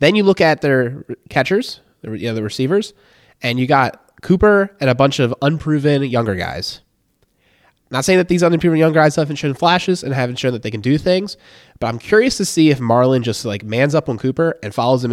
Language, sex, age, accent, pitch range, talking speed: English, male, 20-39, American, 110-155 Hz, 220 wpm